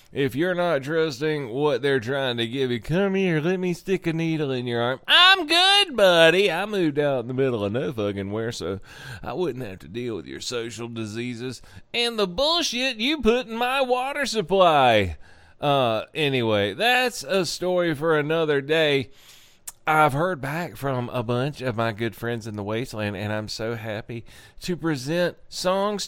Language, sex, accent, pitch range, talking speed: English, male, American, 115-175 Hz, 185 wpm